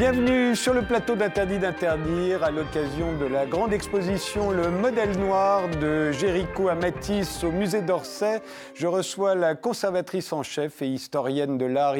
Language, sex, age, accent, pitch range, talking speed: French, male, 50-69, French, 155-200 Hz, 160 wpm